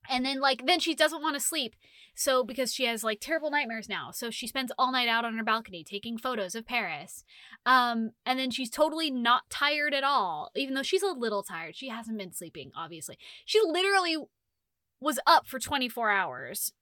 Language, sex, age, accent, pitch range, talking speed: English, female, 10-29, American, 220-315 Hz, 205 wpm